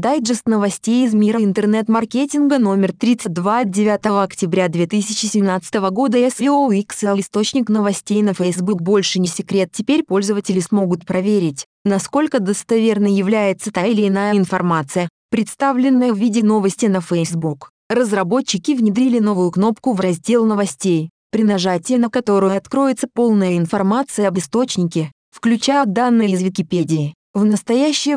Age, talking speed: 20-39, 130 wpm